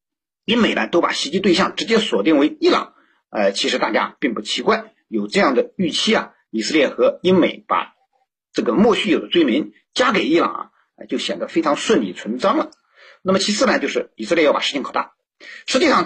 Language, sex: Chinese, male